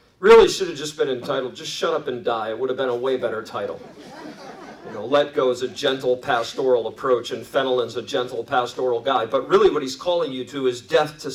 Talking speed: 235 wpm